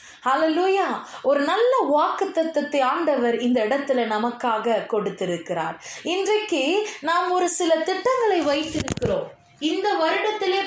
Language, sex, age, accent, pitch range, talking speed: Tamil, female, 20-39, native, 275-390 Hz, 95 wpm